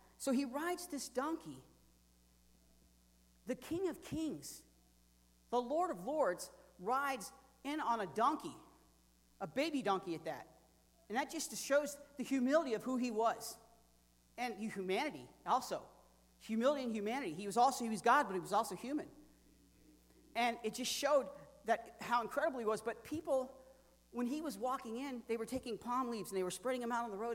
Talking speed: 175 wpm